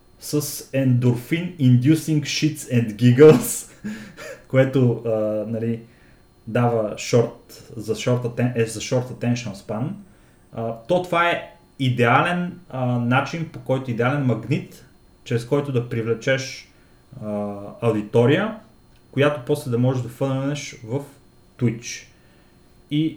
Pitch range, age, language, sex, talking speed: 115-145 Hz, 30-49, Bulgarian, male, 95 wpm